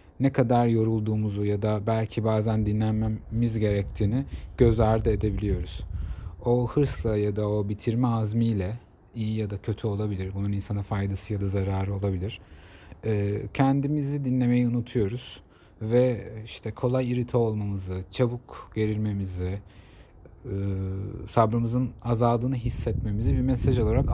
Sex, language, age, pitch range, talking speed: male, Turkish, 30-49, 100-130 Hz, 115 wpm